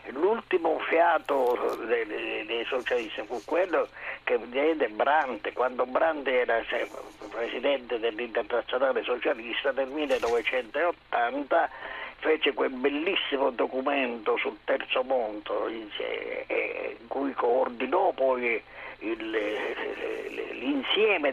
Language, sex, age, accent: Italian, male, 50-69, native